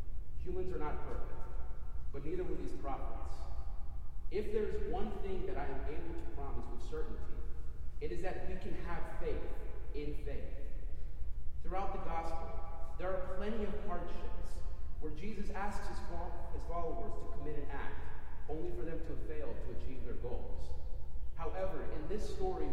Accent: American